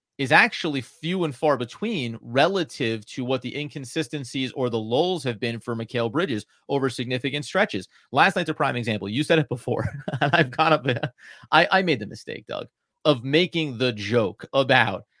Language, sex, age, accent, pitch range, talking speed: English, male, 30-49, American, 120-155 Hz, 190 wpm